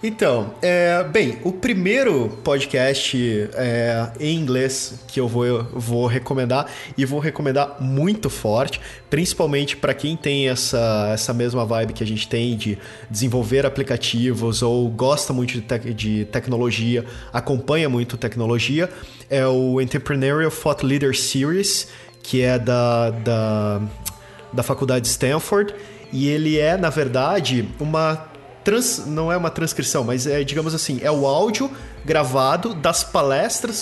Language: Portuguese